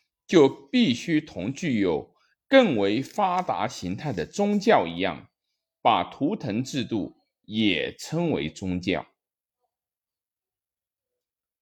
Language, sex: Chinese, male